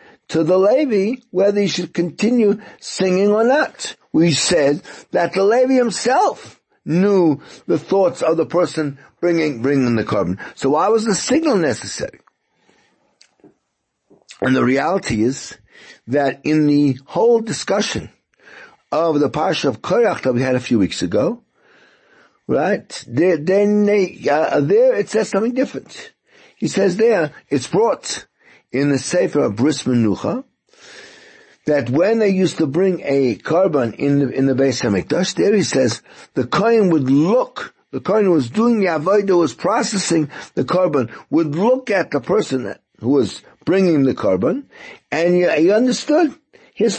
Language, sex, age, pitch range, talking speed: English, male, 60-79, 145-225 Hz, 155 wpm